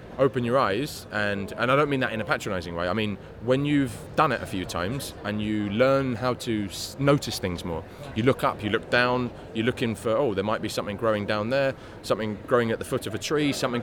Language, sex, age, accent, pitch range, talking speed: English, male, 20-39, British, 100-125 Hz, 245 wpm